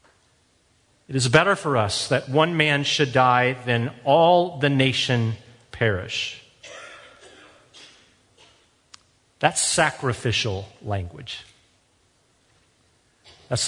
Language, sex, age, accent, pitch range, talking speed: English, male, 40-59, American, 110-140 Hz, 85 wpm